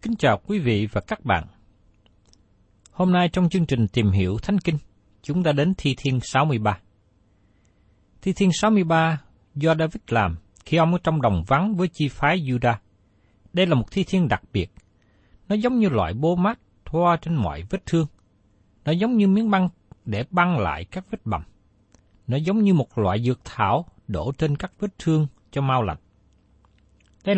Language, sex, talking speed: Vietnamese, male, 190 wpm